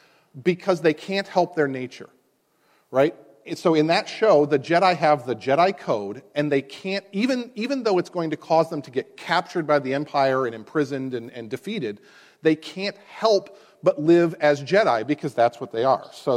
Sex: male